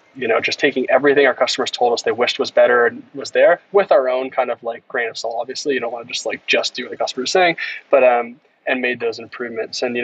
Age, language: 20-39, English